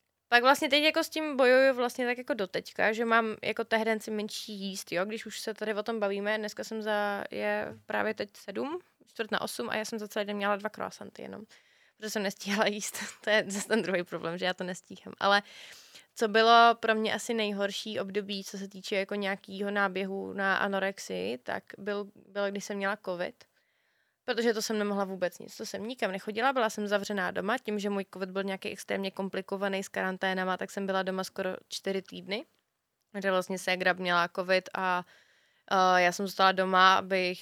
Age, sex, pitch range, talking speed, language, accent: 20-39, female, 195-220 Hz, 200 wpm, Czech, native